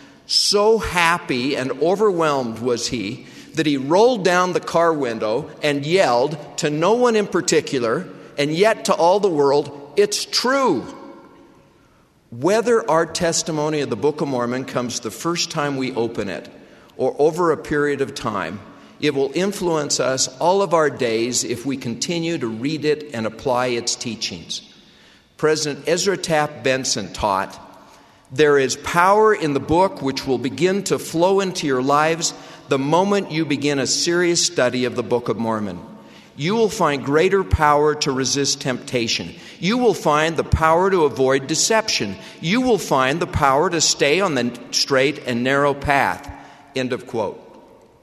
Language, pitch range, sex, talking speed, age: English, 135-175 Hz, male, 160 wpm, 50-69